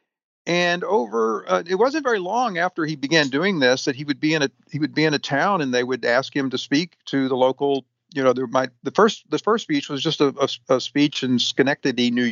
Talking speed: 245 wpm